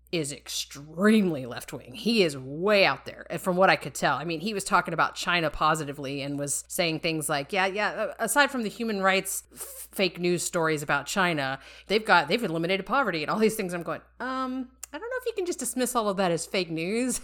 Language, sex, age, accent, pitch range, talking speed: English, female, 30-49, American, 155-200 Hz, 230 wpm